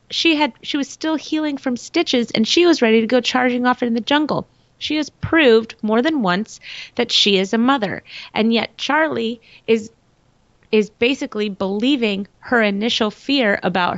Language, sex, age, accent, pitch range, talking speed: English, female, 30-49, American, 190-255 Hz, 175 wpm